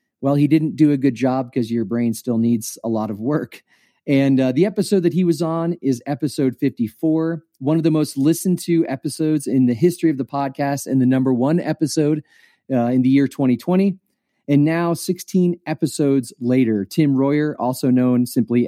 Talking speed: 195 wpm